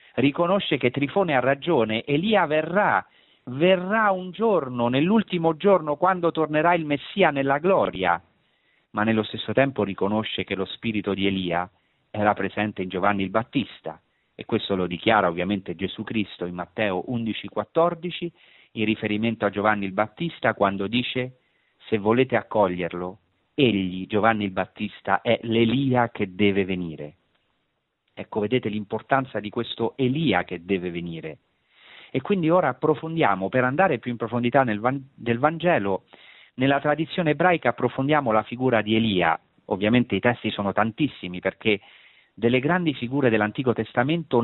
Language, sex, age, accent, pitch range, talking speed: Italian, male, 40-59, native, 105-150 Hz, 140 wpm